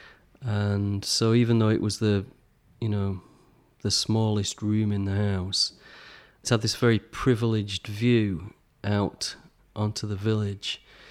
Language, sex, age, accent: English, male, 30-49, British